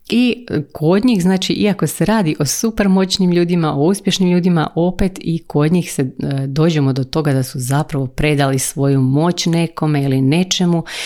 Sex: female